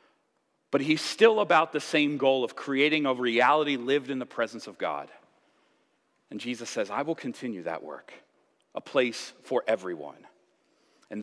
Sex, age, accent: male, 40-59, American